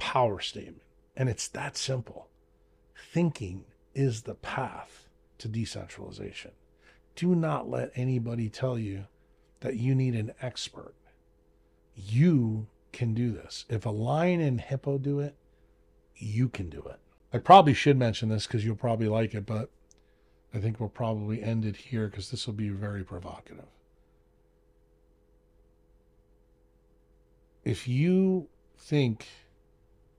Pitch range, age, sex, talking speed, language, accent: 85-120 Hz, 40-59, male, 130 wpm, English, American